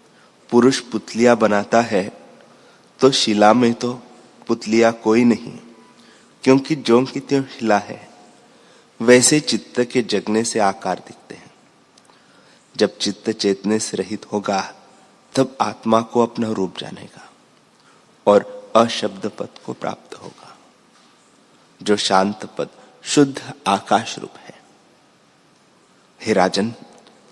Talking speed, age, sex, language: 110 wpm, 30-49, male, Hindi